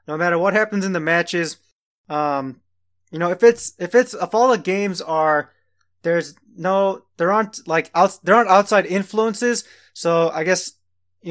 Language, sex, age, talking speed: English, male, 20-39, 175 wpm